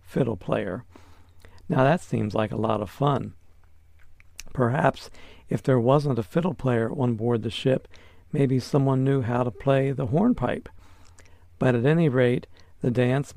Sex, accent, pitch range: male, American, 95-140 Hz